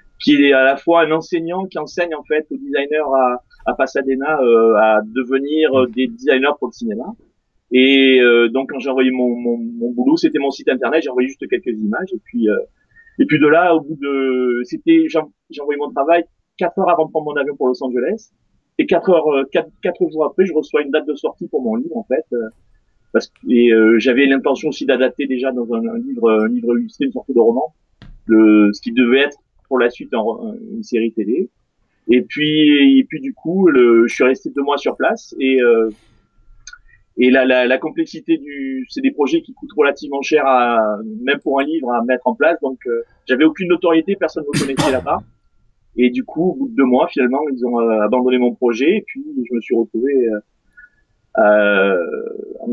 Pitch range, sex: 125-175 Hz, male